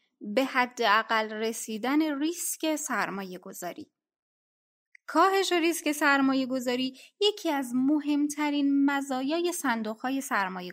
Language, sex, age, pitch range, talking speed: Persian, female, 20-39, 220-300 Hz, 100 wpm